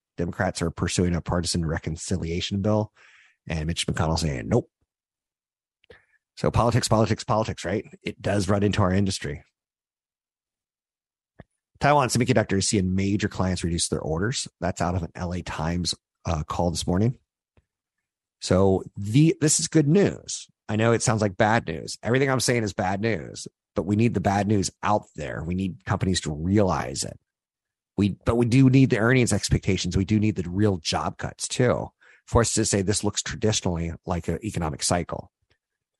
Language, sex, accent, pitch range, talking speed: English, male, American, 85-110 Hz, 170 wpm